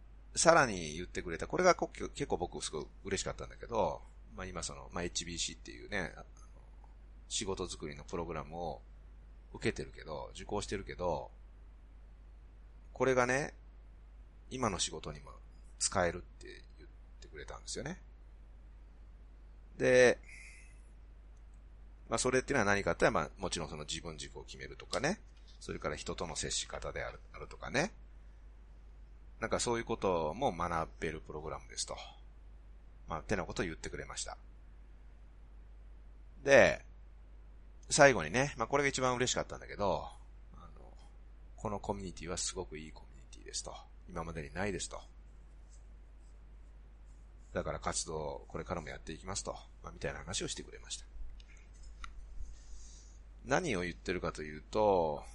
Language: Japanese